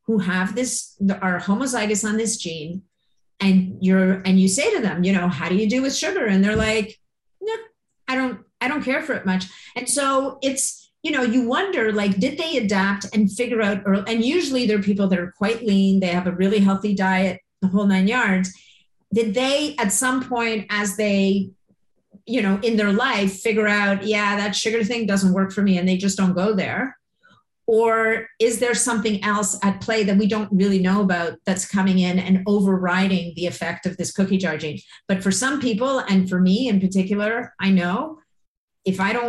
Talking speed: 210 wpm